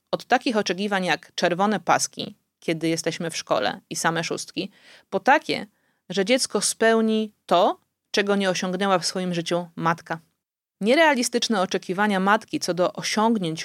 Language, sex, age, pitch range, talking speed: Polish, female, 30-49, 175-220 Hz, 140 wpm